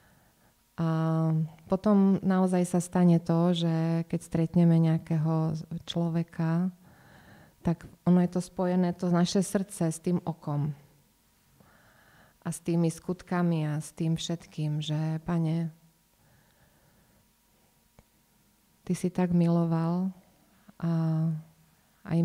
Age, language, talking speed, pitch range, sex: 20-39, Slovak, 105 wpm, 160-180 Hz, female